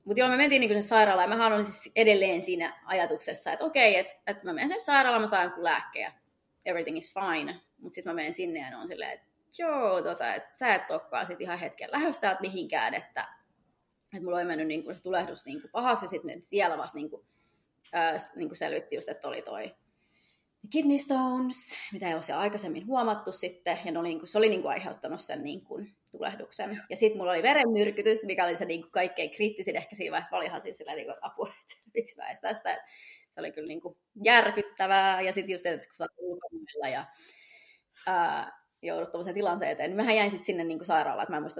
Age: 20-39